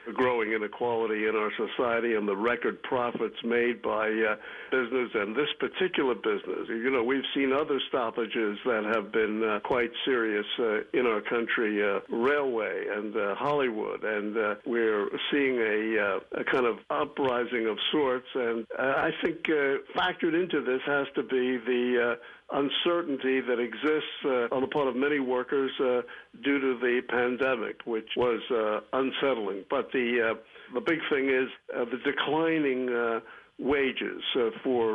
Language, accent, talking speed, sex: English, American, 165 wpm, male